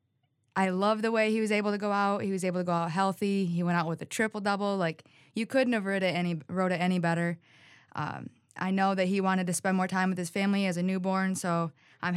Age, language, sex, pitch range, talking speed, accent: 20-39, English, female, 170-200 Hz, 255 wpm, American